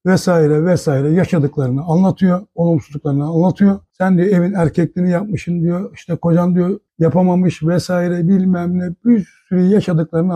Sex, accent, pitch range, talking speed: male, native, 155-200 Hz, 125 wpm